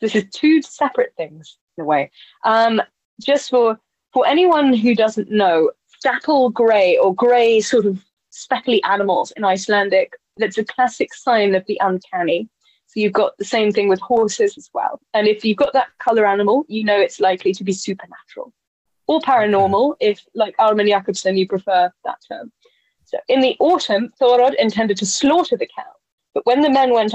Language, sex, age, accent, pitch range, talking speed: English, female, 20-39, British, 200-275 Hz, 180 wpm